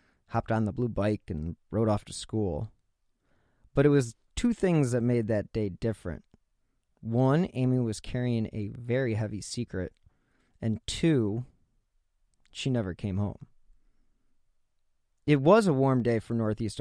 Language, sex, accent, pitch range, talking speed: English, male, American, 105-130 Hz, 145 wpm